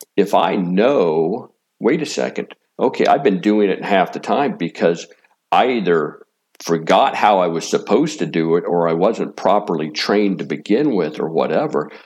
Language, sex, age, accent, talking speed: English, male, 50-69, American, 175 wpm